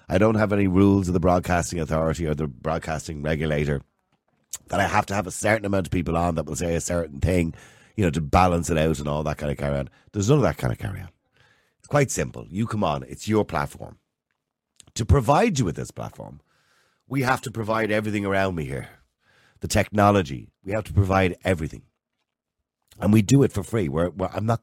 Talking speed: 220 wpm